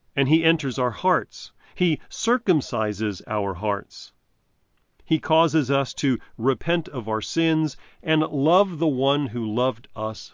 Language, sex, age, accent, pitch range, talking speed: English, male, 40-59, American, 110-155 Hz, 140 wpm